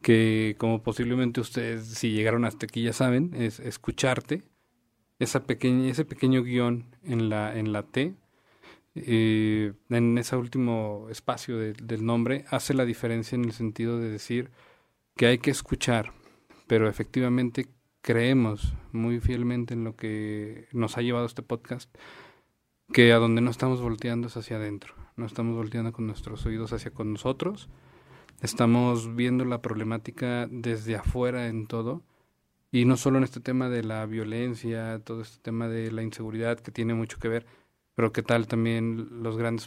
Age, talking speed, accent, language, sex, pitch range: 40-59, 160 wpm, Mexican, Spanish, male, 110-120 Hz